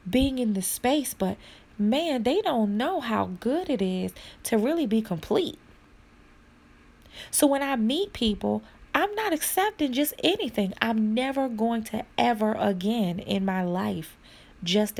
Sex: female